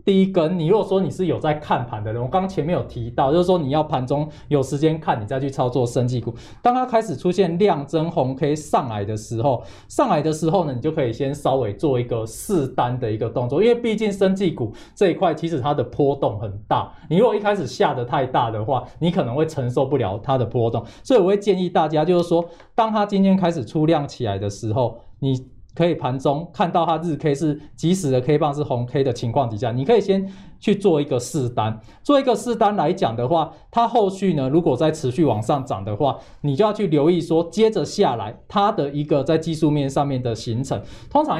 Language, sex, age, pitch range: Chinese, male, 20-39, 125-175 Hz